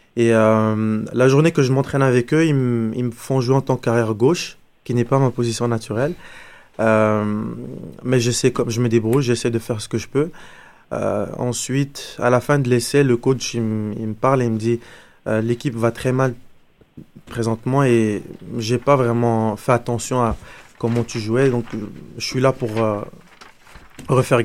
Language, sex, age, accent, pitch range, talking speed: French, male, 20-39, French, 115-130 Hz, 200 wpm